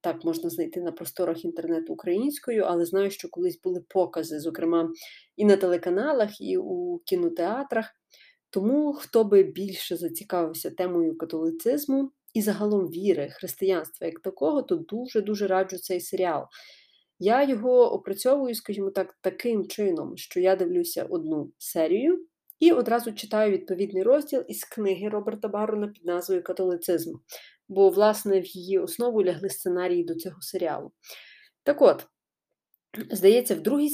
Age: 30-49